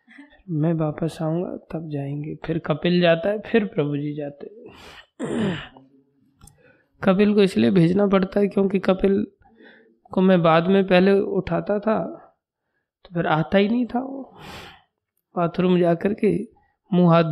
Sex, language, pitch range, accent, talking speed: male, Hindi, 160-200 Hz, native, 140 wpm